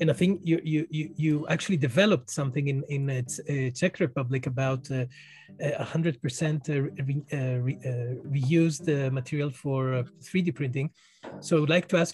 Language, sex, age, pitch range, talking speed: Greek, male, 30-49, 135-175 Hz, 180 wpm